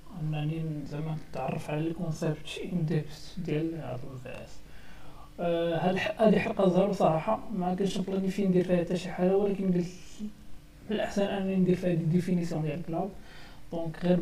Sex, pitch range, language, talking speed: male, 165-190 Hz, Arabic, 125 wpm